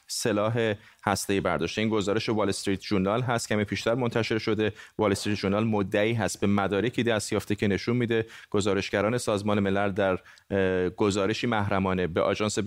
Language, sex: Persian, male